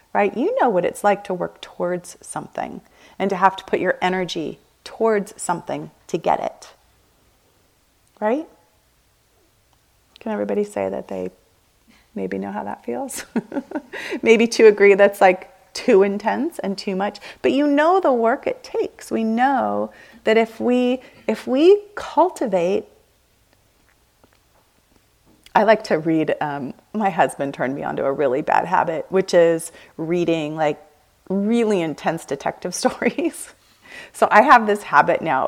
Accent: American